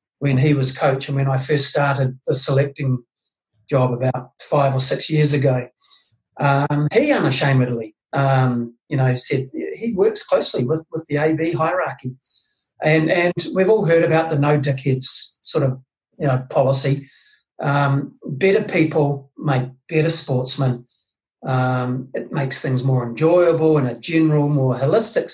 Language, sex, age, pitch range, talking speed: English, male, 40-59, 130-155 Hz, 150 wpm